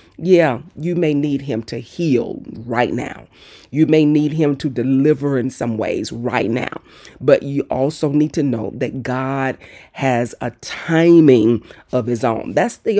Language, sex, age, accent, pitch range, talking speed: English, female, 40-59, American, 120-155 Hz, 165 wpm